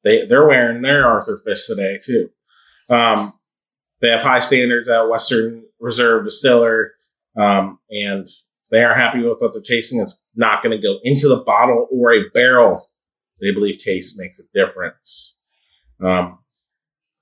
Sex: male